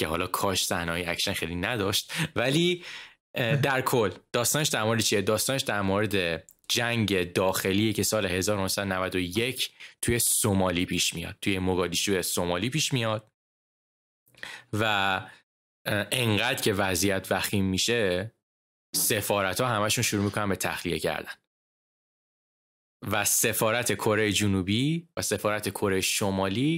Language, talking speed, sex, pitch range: Persian, 110 wpm, male, 95-120 Hz